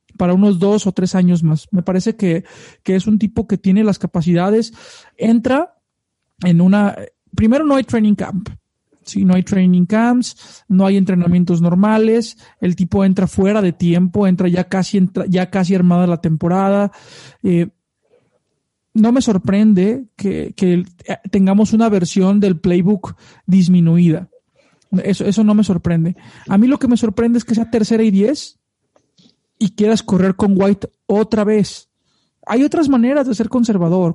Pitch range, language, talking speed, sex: 180-220 Hz, Spanish, 165 wpm, male